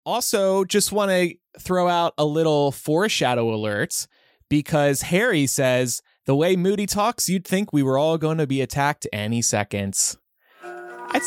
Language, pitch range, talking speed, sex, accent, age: English, 135-190 Hz, 155 wpm, male, American, 20-39